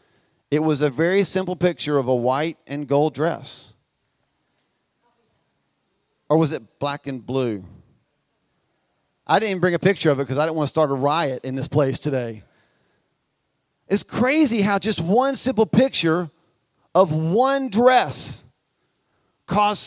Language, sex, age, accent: English, male, 40-59, American